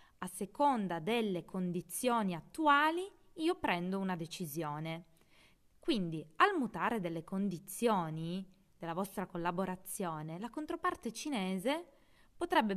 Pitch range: 170-220 Hz